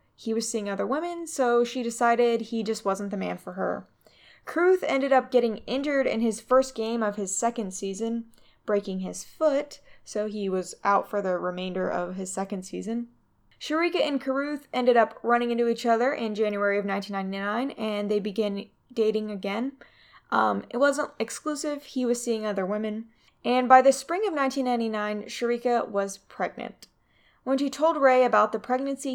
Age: 10-29